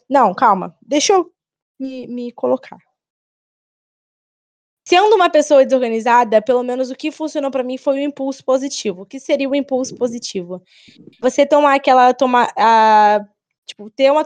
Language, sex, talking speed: Portuguese, female, 145 wpm